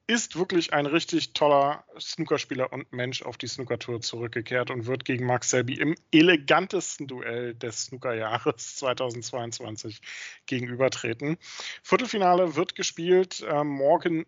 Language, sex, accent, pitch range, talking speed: German, male, German, 125-160 Hz, 120 wpm